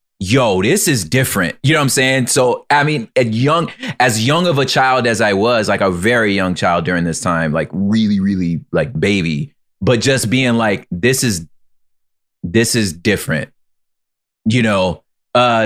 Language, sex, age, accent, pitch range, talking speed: English, male, 30-49, American, 100-125 Hz, 180 wpm